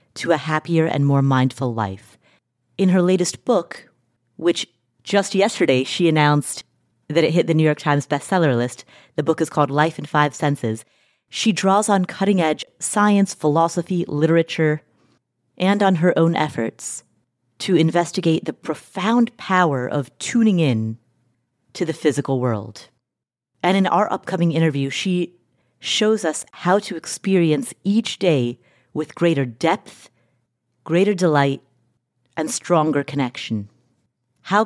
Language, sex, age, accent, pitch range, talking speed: English, female, 30-49, American, 125-180 Hz, 135 wpm